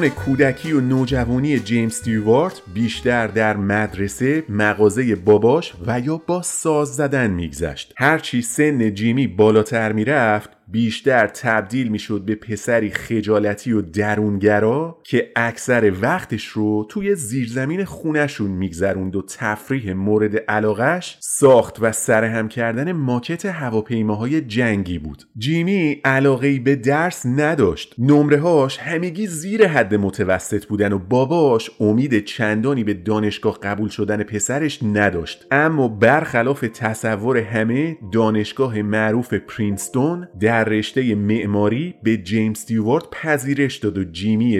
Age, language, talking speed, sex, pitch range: 30-49, Persian, 120 wpm, male, 105-135 Hz